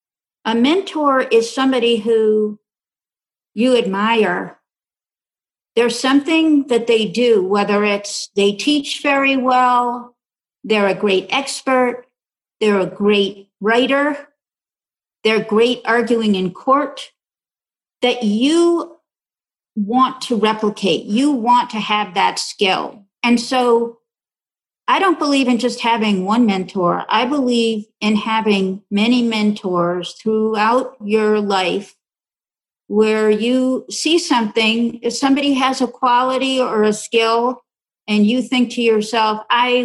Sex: female